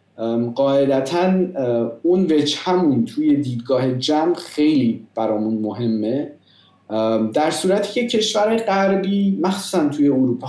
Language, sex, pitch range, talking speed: Persian, male, 125-170 Hz, 105 wpm